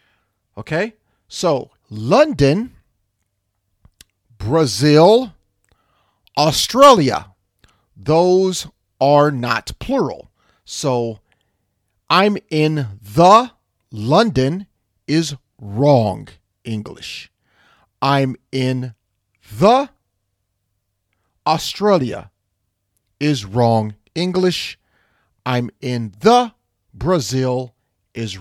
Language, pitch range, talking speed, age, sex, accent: English, 100-155 Hz, 60 wpm, 40-59, male, American